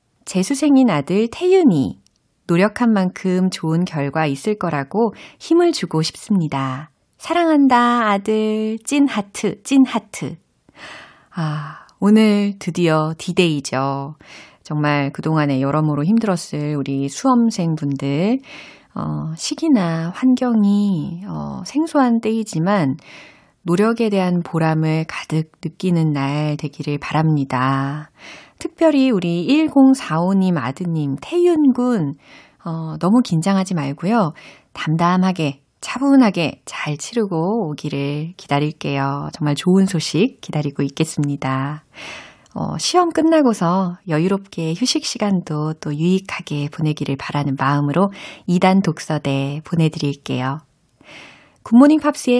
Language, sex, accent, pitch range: Korean, female, native, 150-220 Hz